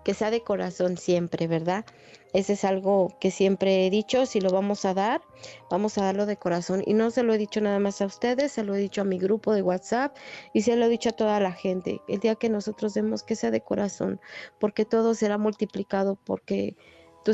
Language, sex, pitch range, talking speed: Spanish, female, 190-220 Hz, 230 wpm